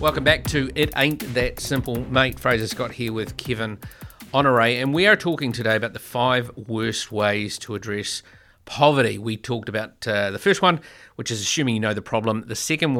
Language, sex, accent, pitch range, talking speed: English, male, Australian, 105-135 Hz, 200 wpm